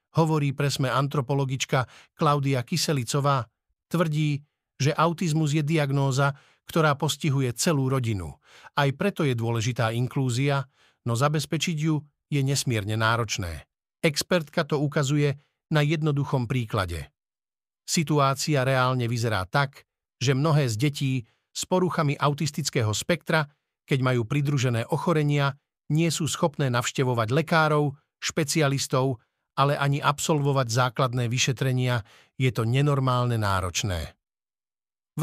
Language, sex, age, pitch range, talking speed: Slovak, male, 50-69, 130-155 Hz, 105 wpm